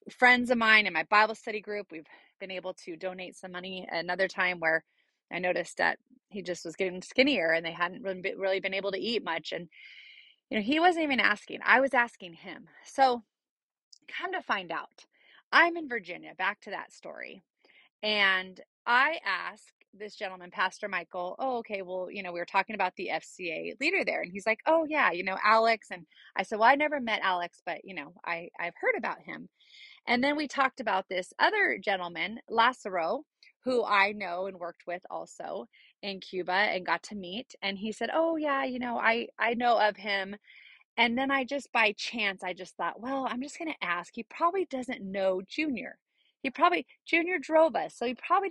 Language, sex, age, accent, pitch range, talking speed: English, female, 30-49, American, 190-270 Hz, 200 wpm